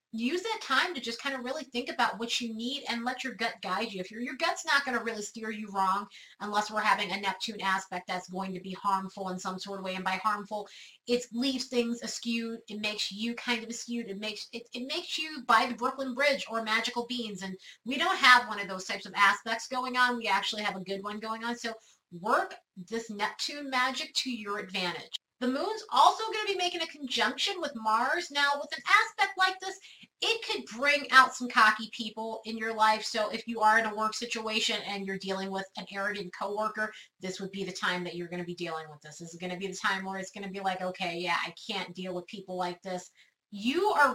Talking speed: 240 wpm